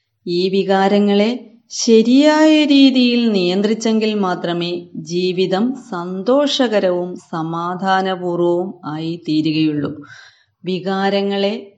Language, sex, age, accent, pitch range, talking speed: Malayalam, female, 30-49, native, 180-230 Hz, 60 wpm